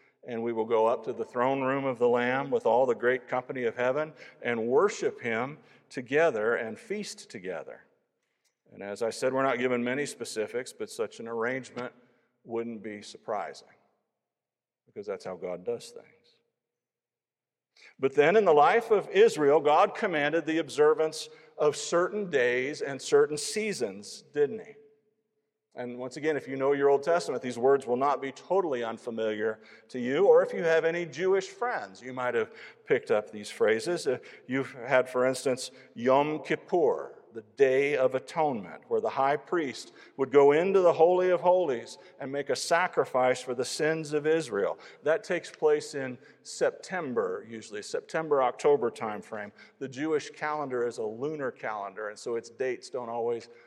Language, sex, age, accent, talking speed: English, male, 50-69, American, 170 wpm